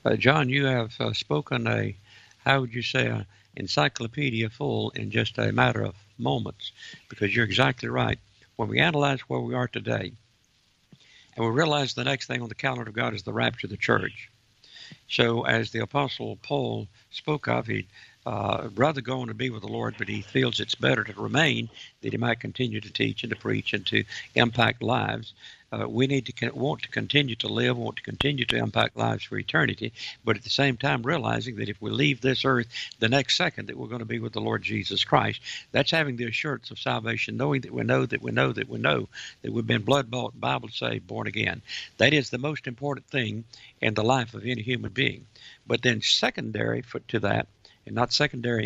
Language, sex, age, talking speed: English, male, 60-79, 210 wpm